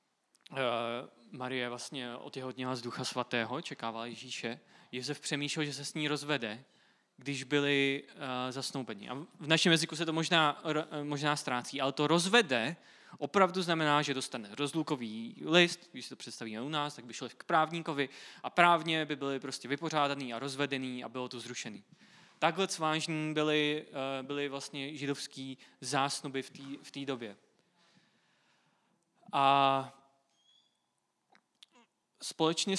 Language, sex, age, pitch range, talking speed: Czech, male, 20-39, 130-155 Hz, 130 wpm